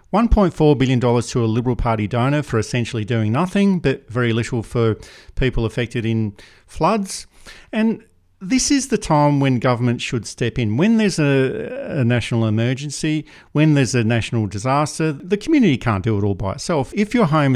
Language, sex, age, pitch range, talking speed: English, male, 50-69, 115-150 Hz, 170 wpm